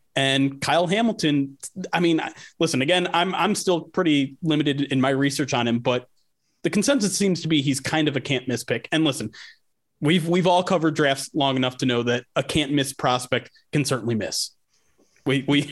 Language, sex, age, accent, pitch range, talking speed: English, male, 30-49, American, 135-175 Hz, 195 wpm